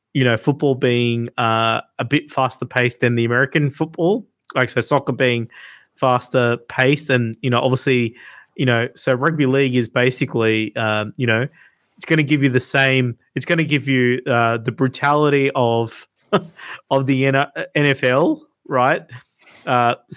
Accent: Australian